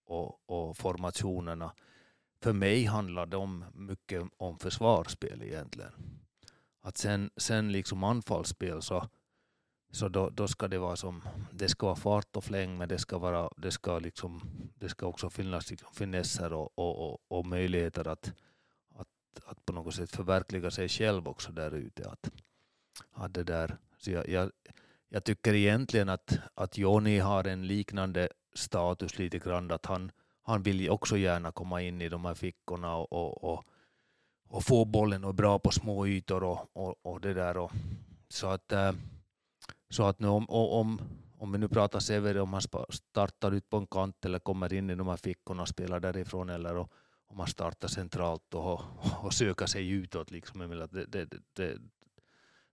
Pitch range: 90-105 Hz